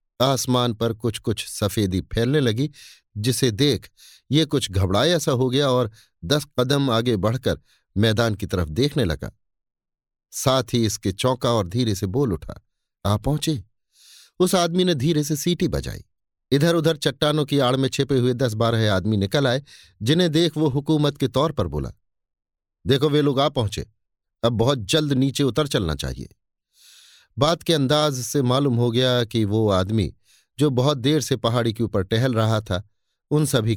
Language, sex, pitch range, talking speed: Hindi, male, 105-140 Hz, 175 wpm